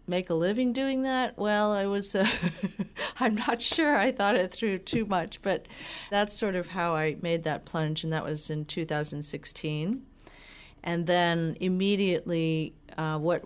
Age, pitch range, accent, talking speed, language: 40-59, 155-180 Hz, American, 165 wpm, English